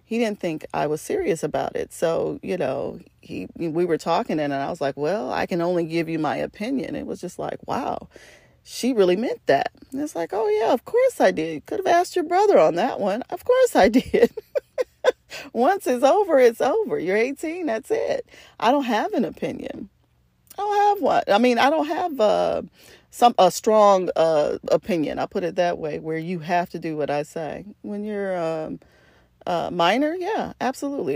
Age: 40-59